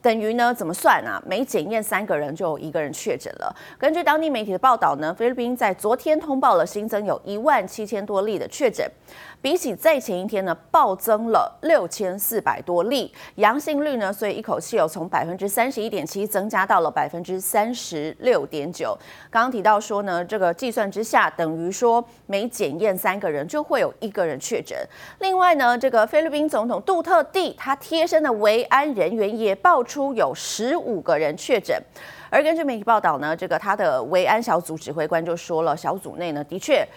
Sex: female